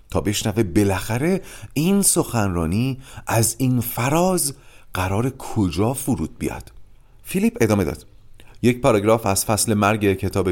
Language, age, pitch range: Persian, 40-59, 95-155 Hz